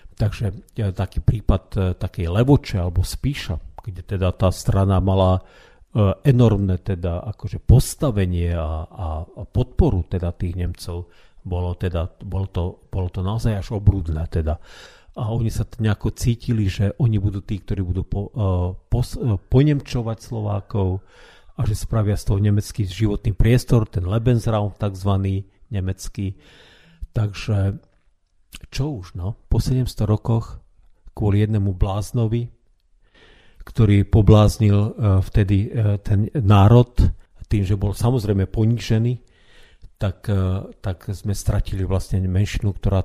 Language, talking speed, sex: Slovak, 110 wpm, male